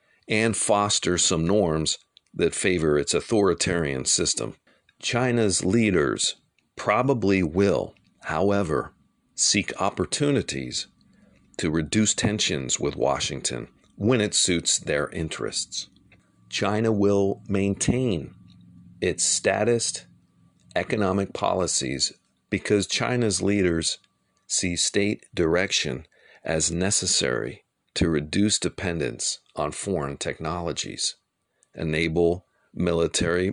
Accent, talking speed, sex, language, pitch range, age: American, 90 wpm, male, English, 85-105 Hz, 40-59